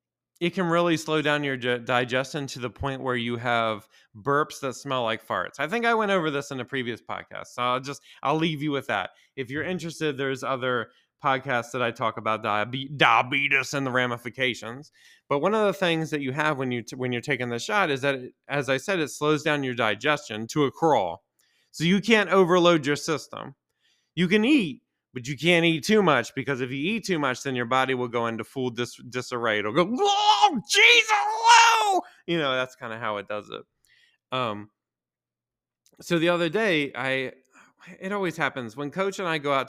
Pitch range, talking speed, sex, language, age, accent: 120-160 Hz, 210 wpm, male, English, 20-39, American